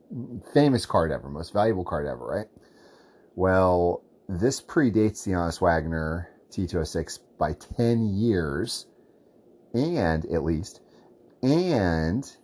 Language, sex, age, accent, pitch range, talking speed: English, male, 30-49, American, 80-95 Hz, 105 wpm